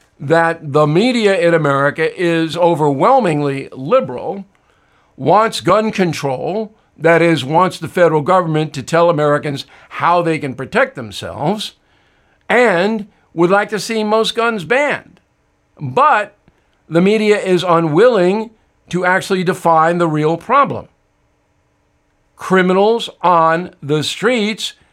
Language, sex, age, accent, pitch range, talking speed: English, male, 60-79, American, 160-215 Hz, 115 wpm